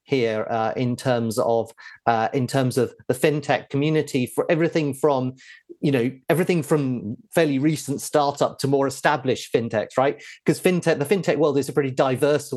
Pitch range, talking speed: 125-145 Hz, 170 wpm